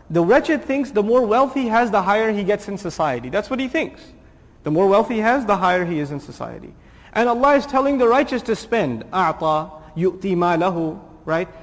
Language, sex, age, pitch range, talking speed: English, male, 30-49, 180-230 Hz, 210 wpm